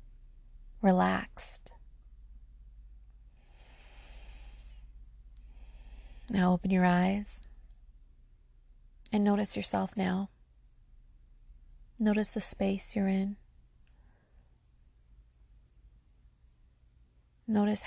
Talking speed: 50 wpm